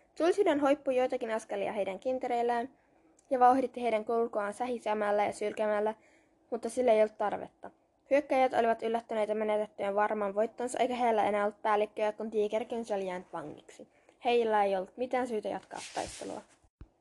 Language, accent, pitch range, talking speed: Finnish, native, 215-270 Hz, 145 wpm